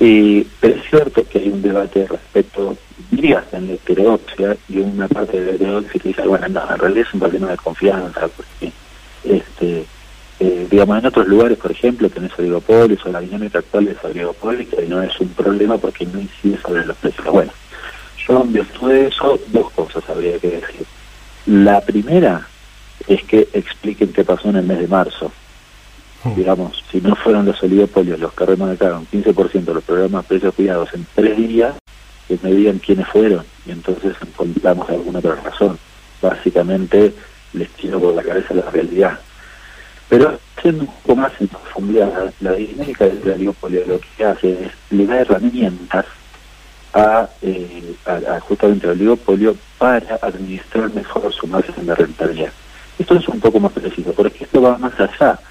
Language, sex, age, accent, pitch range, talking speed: Spanish, male, 40-59, Argentinian, 95-110 Hz, 175 wpm